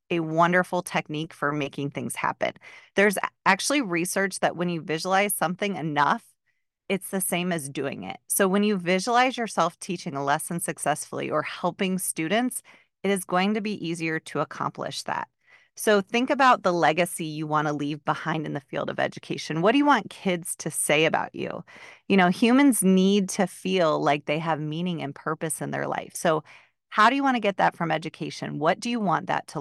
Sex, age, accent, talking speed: female, 30-49, American, 200 wpm